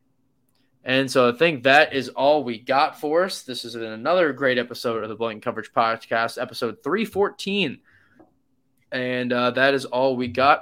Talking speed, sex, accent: 170 wpm, male, American